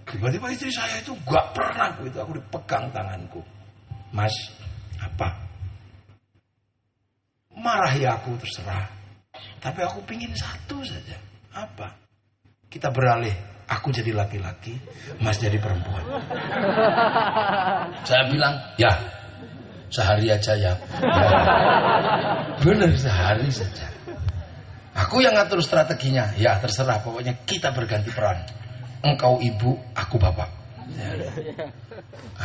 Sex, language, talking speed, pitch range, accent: male, Indonesian, 105 wpm, 105-130 Hz, native